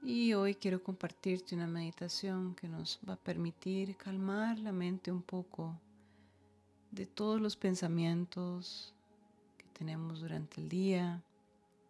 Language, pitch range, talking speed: Spanish, 140-180 Hz, 125 wpm